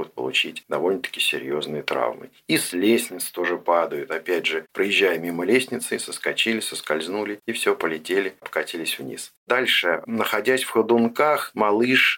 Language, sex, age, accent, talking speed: Russian, male, 50-69, native, 135 wpm